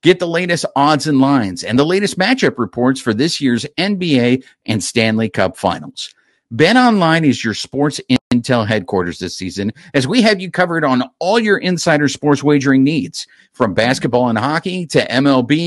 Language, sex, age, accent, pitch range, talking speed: English, male, 50-69, American, 130-195 Hz, 175 wpm